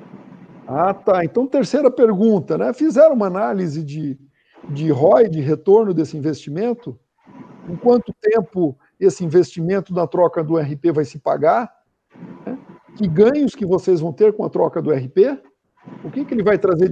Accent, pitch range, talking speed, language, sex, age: Brazilian, 170-215 Hz, 160 wpm, Portuguese, male, 50-69